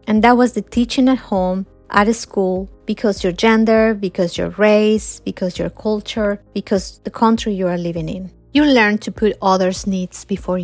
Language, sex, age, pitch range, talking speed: English, female, 30-49, 190-225 Hz, 185 wpm